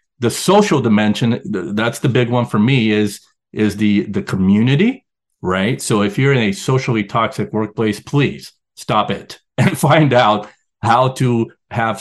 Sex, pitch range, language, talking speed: male, 105-140 Hz, English, 160 wpm